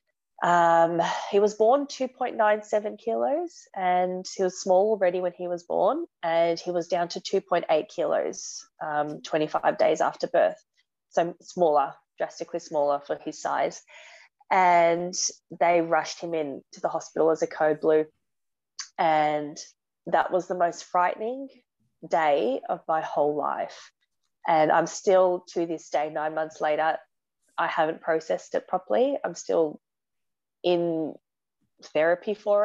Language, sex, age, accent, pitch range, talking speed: English, female, 20-39, Australian, 160-190 Hz, 140 wpm